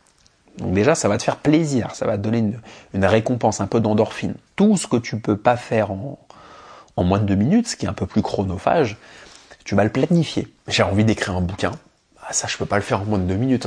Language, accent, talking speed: English, French, 255 wpm